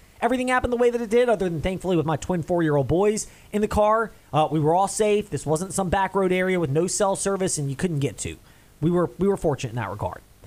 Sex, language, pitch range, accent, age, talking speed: male, English, 140-220 Hz, American, 20-39, 265 wpm